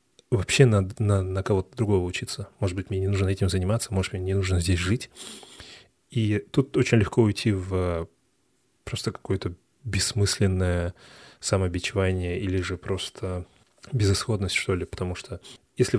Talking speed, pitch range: 145 wpm, 95-115 Hz